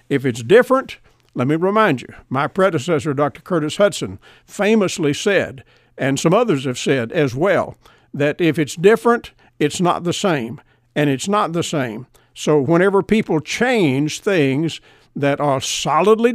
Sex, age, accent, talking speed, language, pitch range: male, 50-69, American, 155 wpm, English, 145-195 Hz